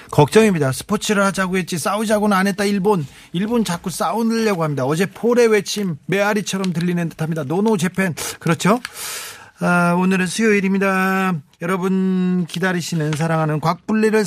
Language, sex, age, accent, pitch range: Korean, male, 40-59, native, 145-210 Hz